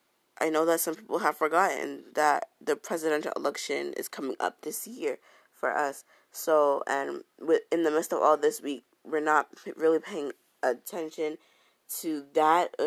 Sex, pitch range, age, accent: female, 150-180 Hz, 20-39, American